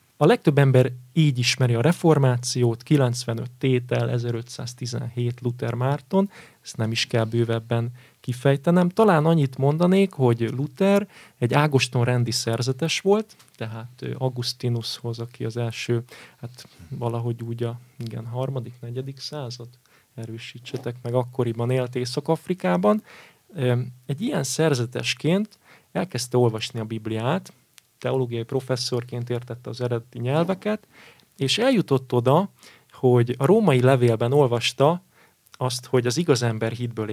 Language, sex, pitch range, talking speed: Hungarian, male, 120-140 Hz, 120 wpm